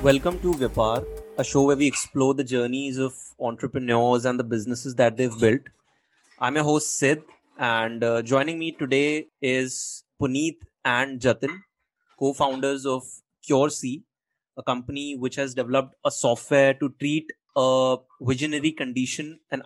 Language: English